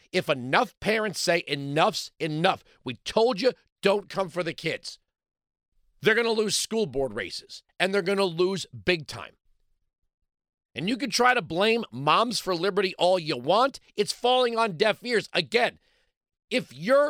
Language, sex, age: English, male, 40-59